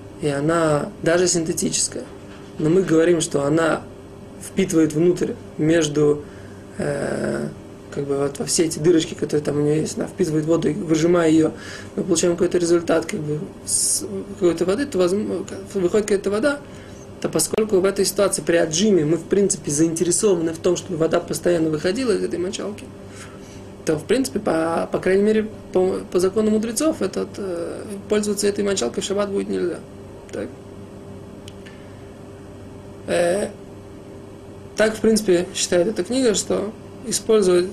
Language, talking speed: Russian, 145 wpm